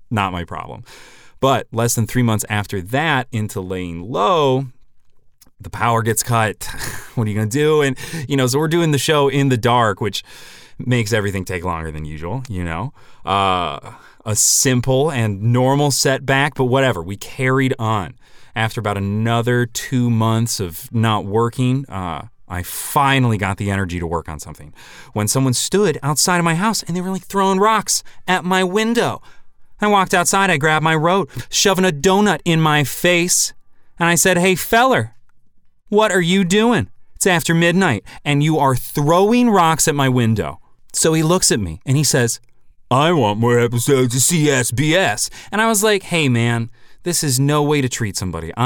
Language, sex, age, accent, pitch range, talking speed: English, male, 30-49, American, 110-160 Hz, 185 wpm